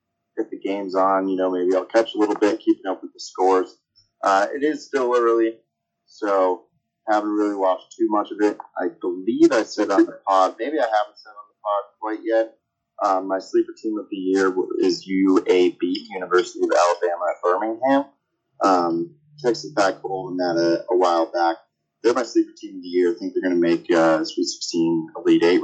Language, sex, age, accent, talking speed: English, male, 30-49, American, 200 wpm